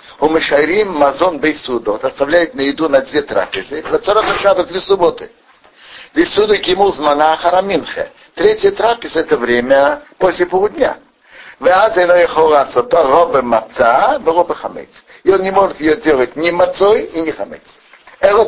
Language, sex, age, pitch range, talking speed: Russian, male, 60-79, 130-210 Hz, 115 wpm